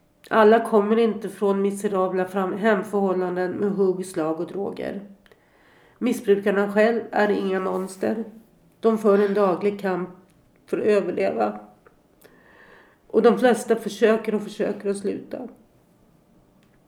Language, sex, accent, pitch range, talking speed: Swedish, female, native, 195-220 Hz, 115 wpm